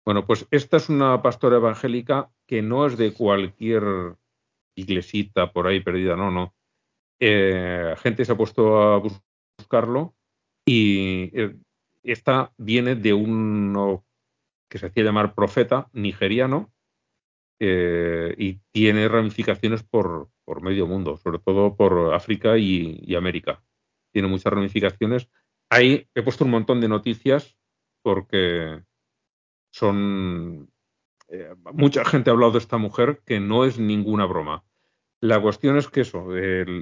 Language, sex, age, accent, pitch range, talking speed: Spanish, male, 40-59, Spanish, 95-120 Hz, 135 wpm